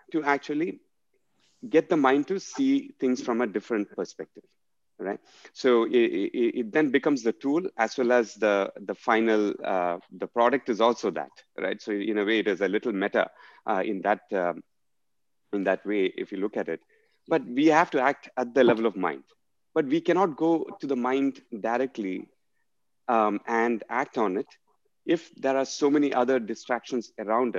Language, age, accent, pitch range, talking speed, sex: English, 30-49, Indian, 110-150 Hz, 185 wpm, male